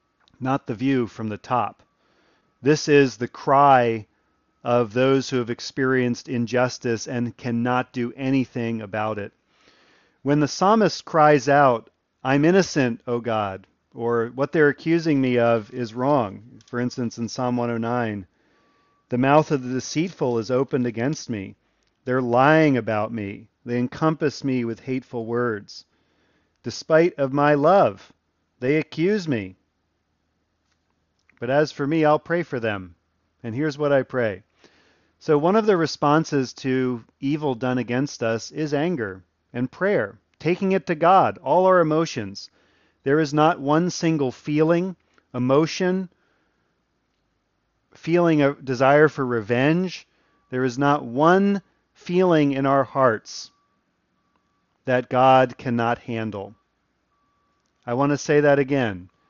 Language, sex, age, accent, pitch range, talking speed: English, male, 40-59, American, 115-150 Hz, 135 wpm